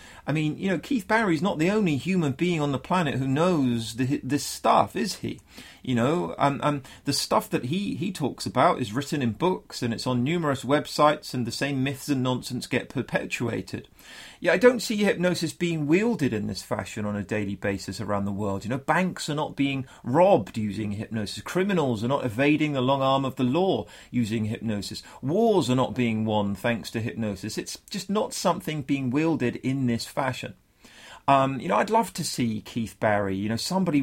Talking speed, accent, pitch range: 205 wpm, British, 115-155 Hz